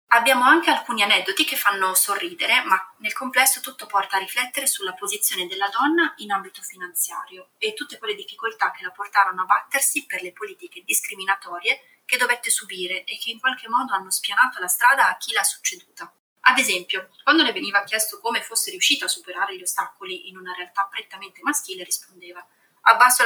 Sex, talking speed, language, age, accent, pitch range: female, 180 wpm, Italian, 30-49, native, 190-285 Hz